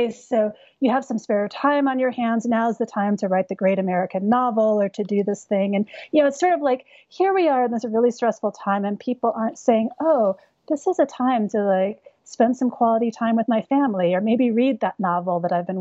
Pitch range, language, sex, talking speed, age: 195-250 Hz, English, female, 245 wpm, 30-49